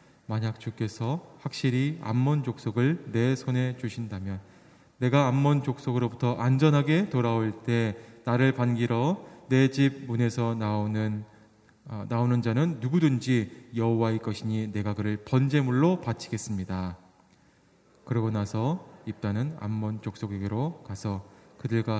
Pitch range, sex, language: 105-130 Hz, male, Korean